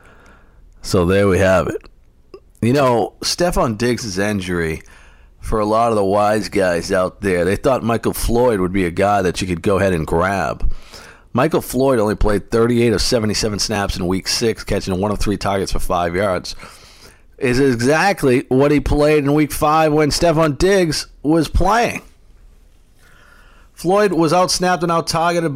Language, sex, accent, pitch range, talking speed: English, male, American, 85-120 Hz, 165 wpm